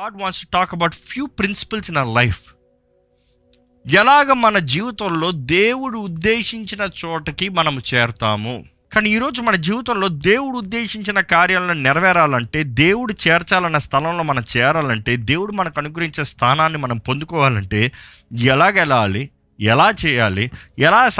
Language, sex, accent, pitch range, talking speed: Telugu, male, native, 120-195 Hz, 145 wpm